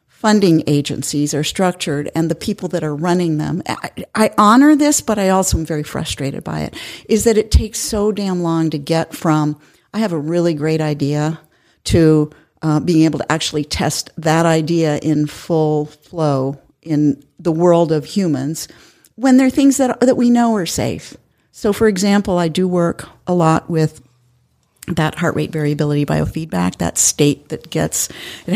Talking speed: 175 wpm